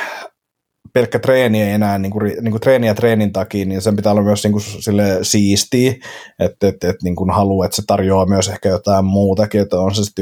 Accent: native